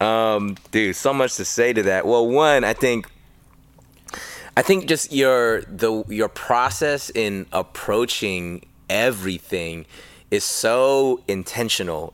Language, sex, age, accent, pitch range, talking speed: English, male, 20-39, American, 95-130 Hz, 125 wpm